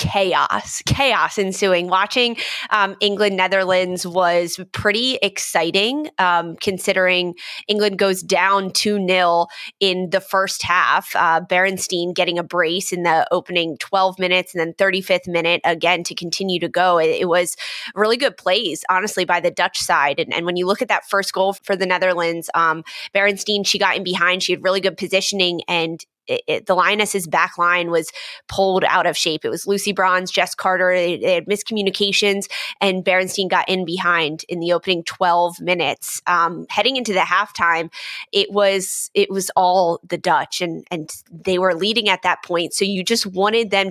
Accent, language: American, English